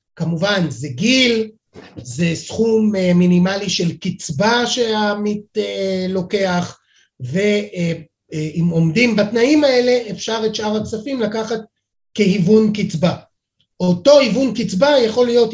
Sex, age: male, 30-49